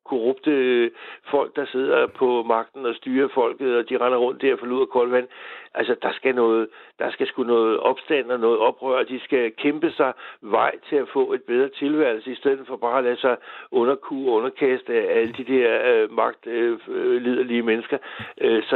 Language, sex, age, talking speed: Danish, male, 60-79, 195 wpm